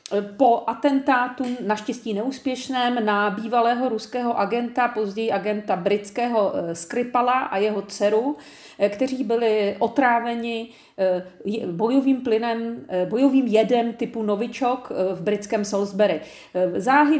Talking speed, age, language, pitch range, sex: 100 wpm, 40-59, Czech, 210-265 Hz, female